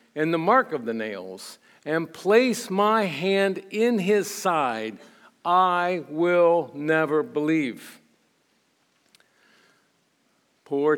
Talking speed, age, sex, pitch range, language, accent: 100 wpm, 60-79, male, 135-180 Hz, English, American